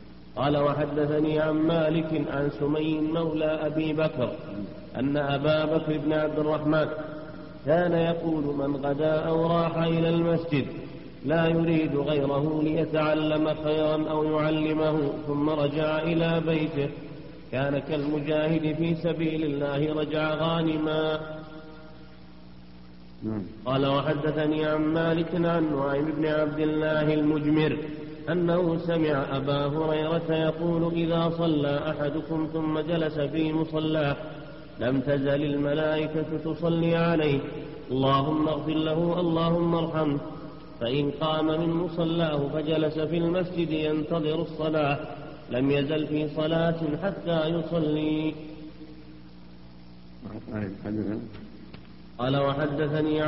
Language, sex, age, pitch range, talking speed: Arabic, male, 40-59, 145-155 Hz, 100 wpm